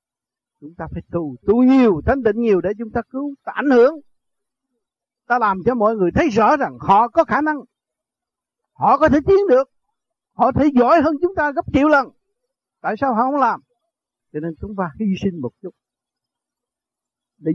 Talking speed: 190 wpm